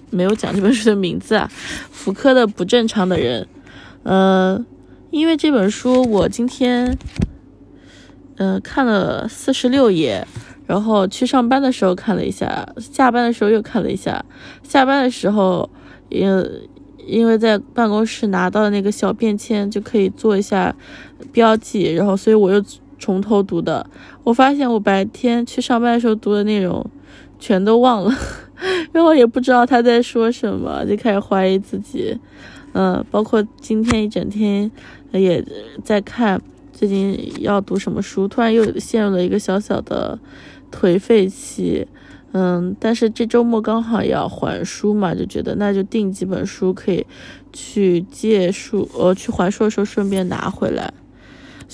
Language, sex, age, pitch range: Chinese, female, 20-39, 195-240 Hz